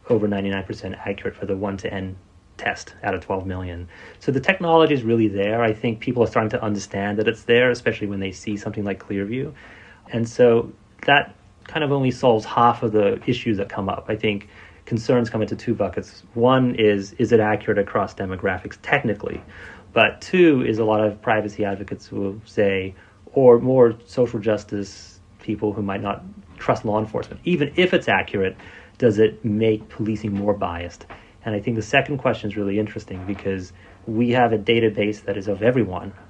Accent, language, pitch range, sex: American, English, 100-115 Hz, male